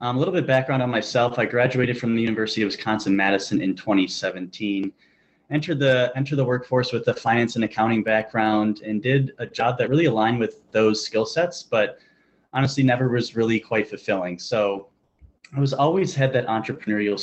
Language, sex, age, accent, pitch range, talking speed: English, male, 20-39, American, 100-125 Hz, 185 wpm